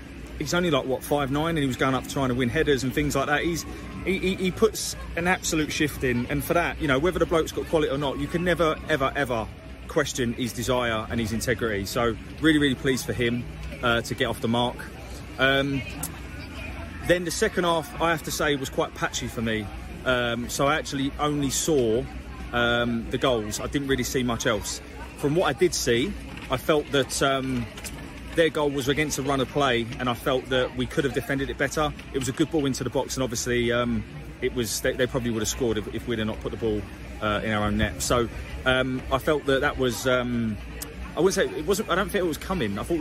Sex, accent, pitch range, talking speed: male, British, 115-145 Hz, 240 wpm